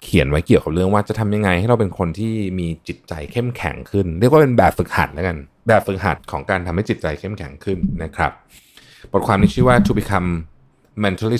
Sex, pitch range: male, 85-125 Hz